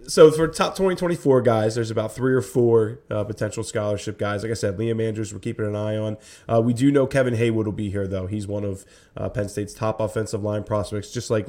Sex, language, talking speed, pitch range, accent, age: male, English, 250 wpm, 105-125 Hz, American, 20-39